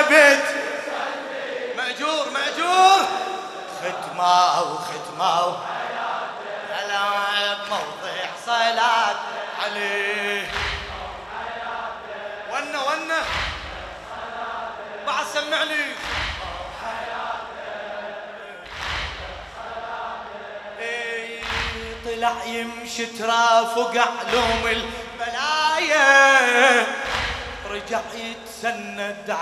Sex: male